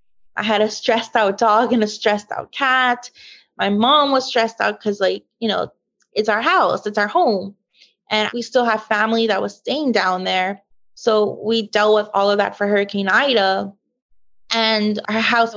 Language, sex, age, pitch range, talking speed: English, female, 20-39, 205-250 Hz, 190 wpm